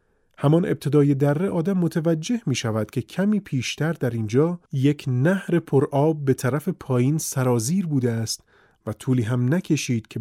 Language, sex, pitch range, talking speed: Persian, male, 120-170 Hz, 160 wpm